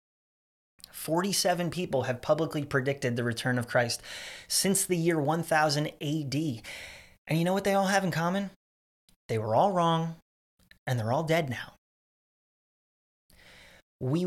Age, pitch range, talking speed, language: 30-49, 125-175 Hz, 140 wpm, English